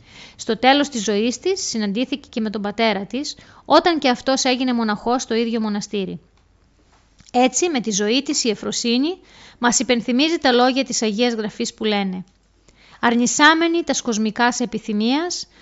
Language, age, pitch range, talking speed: Greek, 20-39, 210-270 Hz, 150 wpm